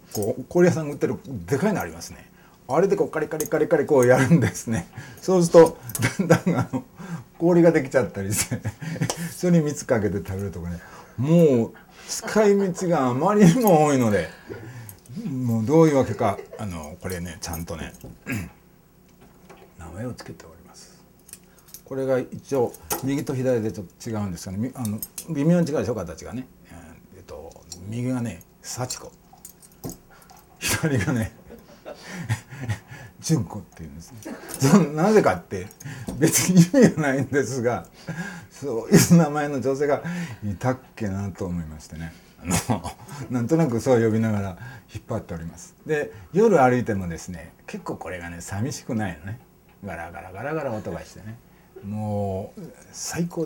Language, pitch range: Japanese, 100-160 Hz